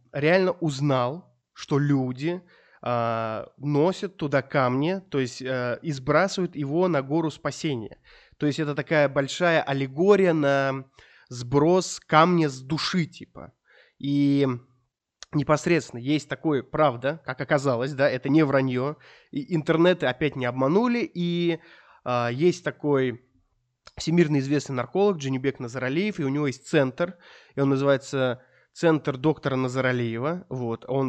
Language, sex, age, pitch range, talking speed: Russian, male, 20-39, 130-170 Hz, 125 wpm